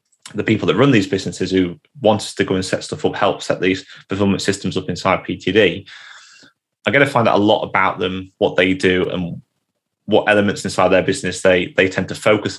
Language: English